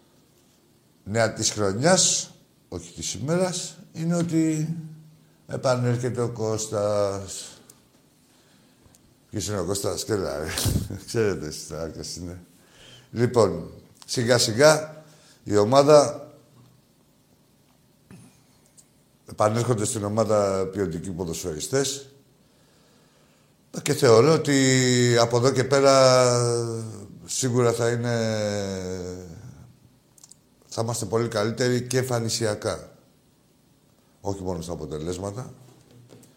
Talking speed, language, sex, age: 80 wpm, Greek, male, 60-79